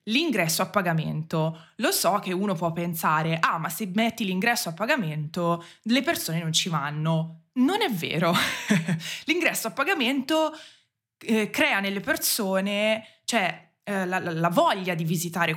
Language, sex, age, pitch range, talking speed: Italian, female, 20-39, 170-225 Hz, 150 wpm